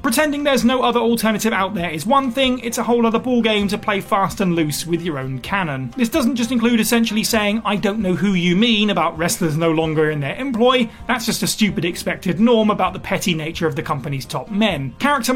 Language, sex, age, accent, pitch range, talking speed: English, male, 30-49, British, 170-230 Hz, 230 wpm